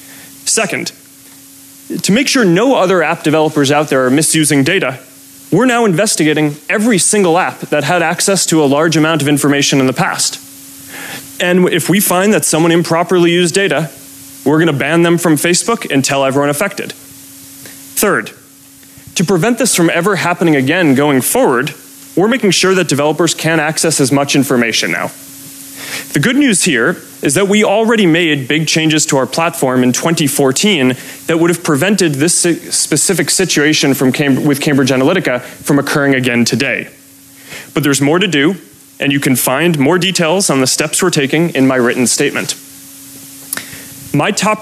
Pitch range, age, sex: 135-170 Hz, 30-49, male